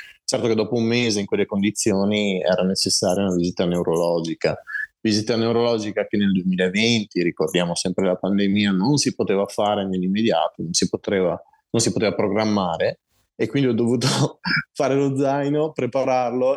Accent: native